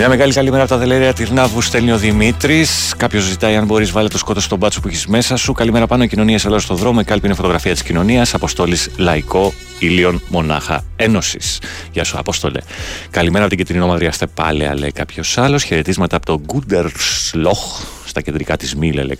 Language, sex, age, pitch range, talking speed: Greek, male, 30-49, 80-115 Hz, 205 wpm